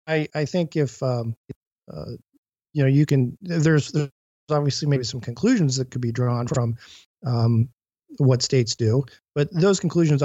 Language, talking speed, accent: English, 165 wpm, American